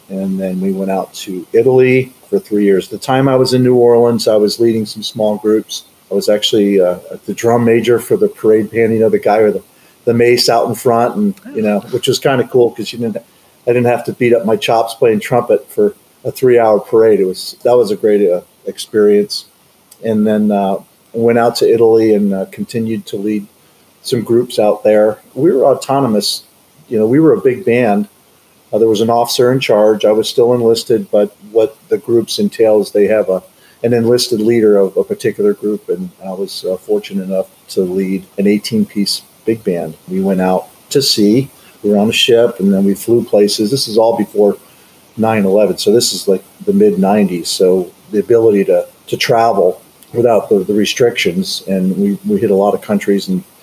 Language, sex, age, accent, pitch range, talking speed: English, male, 40-59, American, 100-130 Hz, 210 wpm